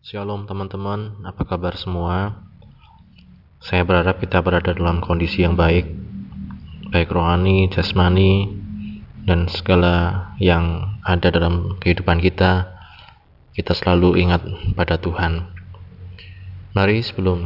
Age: 20-39